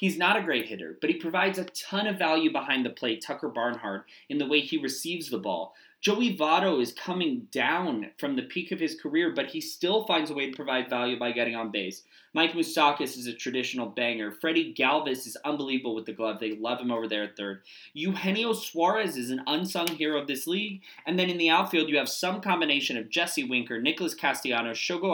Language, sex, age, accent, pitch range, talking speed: English, male, 20-39, American, 135-200 Hz, 220 wpm